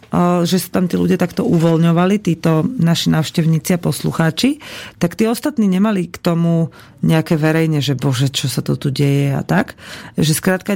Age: 40-59